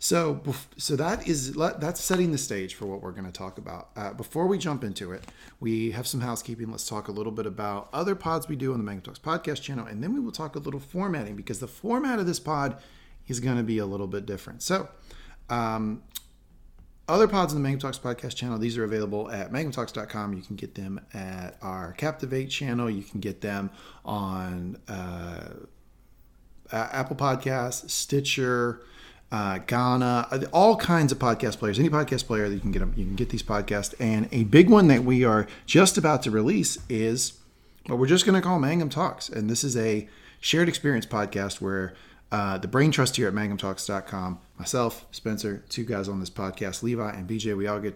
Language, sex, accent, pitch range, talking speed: English, male, American, 105-140 Hz, 205 wpm